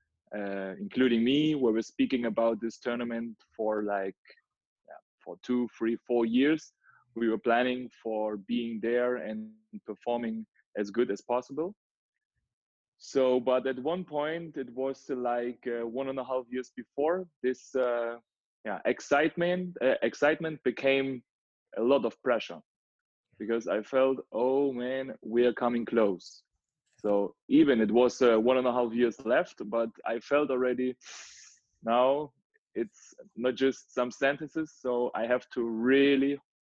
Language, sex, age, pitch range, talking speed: English, male, 20-39, 115-135 Hz, 145 wpm